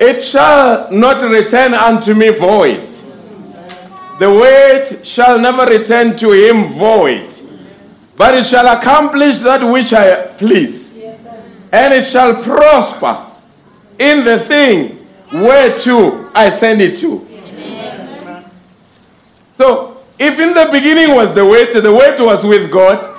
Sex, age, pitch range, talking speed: male, 50-69, 220-275 Hz, 125 wpm